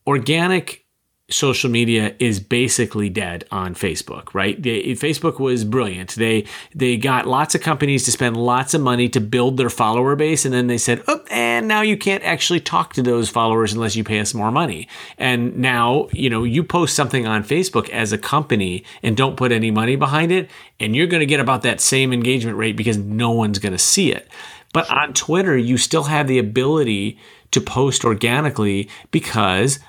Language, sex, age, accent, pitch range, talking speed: English, male, 30-49, American, 110-145 Hz, 195 wpm